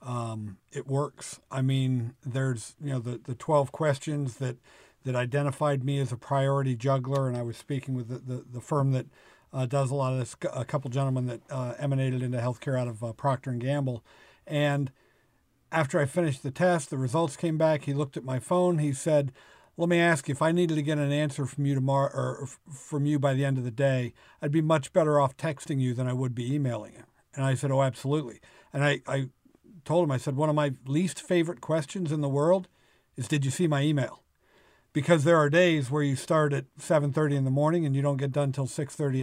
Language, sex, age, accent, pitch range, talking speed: English, male, 50-69, American, 130-155 Hz, 230 wpm